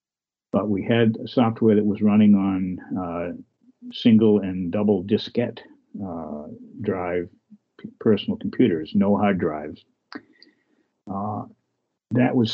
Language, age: English, 50-69